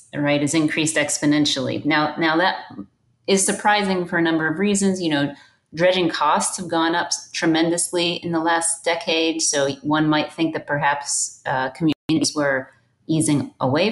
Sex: female